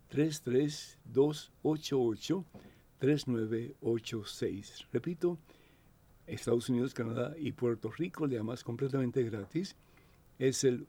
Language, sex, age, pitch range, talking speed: Spanish, male, 60-79, 120-150 Hz, 85 wpm